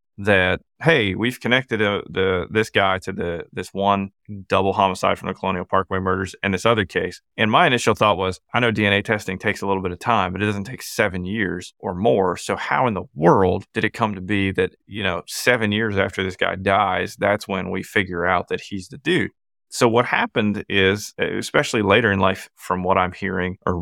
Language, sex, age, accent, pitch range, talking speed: English, male, 30-49, American, 95-110 Hz, 220 wpm